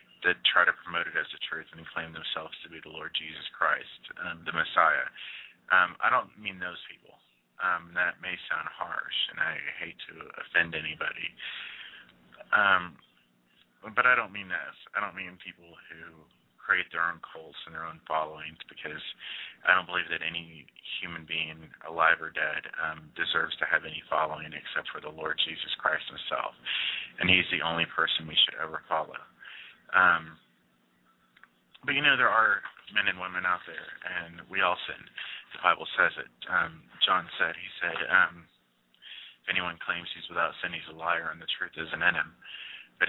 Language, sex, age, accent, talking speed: English, male, 30-49, American, 180 wpm